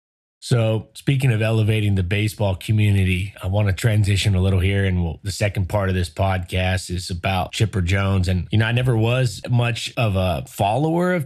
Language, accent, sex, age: English, American, male, 30-49